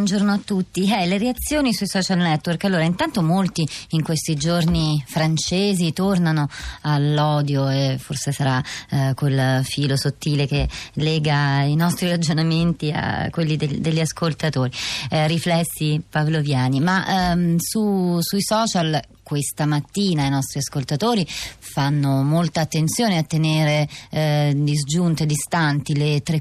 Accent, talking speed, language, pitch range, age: native, 130 wpm, Italian, 145-170 Hz, 30-49